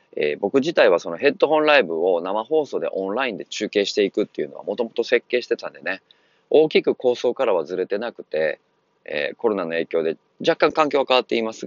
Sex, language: male, Japanese